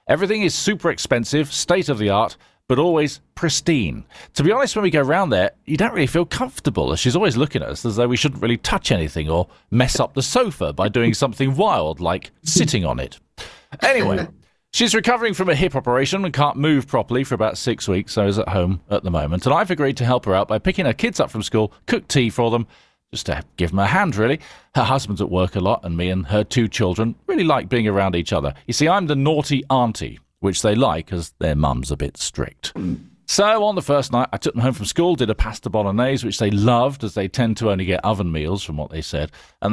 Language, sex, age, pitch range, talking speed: English, male, 40-59, 95-145 Hz, 240 wpm